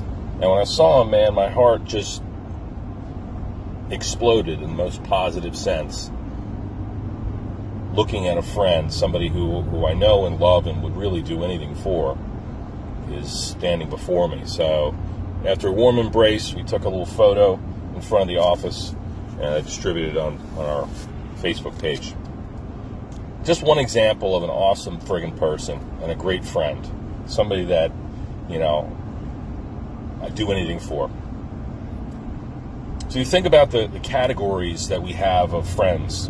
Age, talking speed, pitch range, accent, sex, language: 40-59, 150 wpm, 90-105 Hz, American, male, English